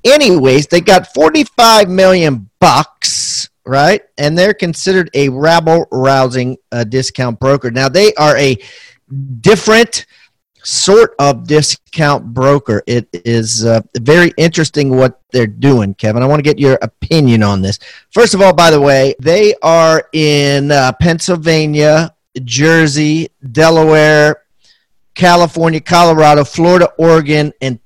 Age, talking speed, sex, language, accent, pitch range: 40-59, 125 wpm, male, English, American, 135-175 Hz